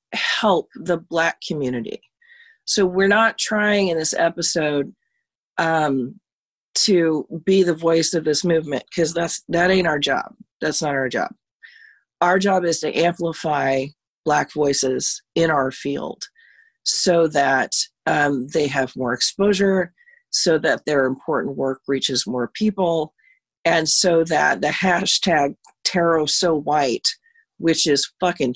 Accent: American